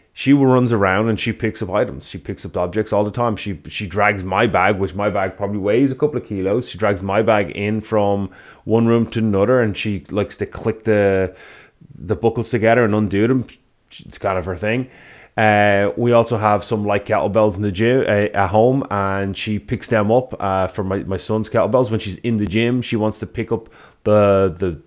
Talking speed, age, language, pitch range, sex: 225 wpm, 30-49, English, 100-115 Hz, male